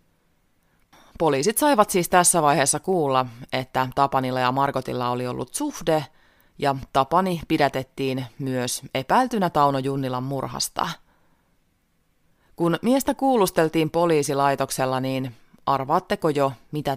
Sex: female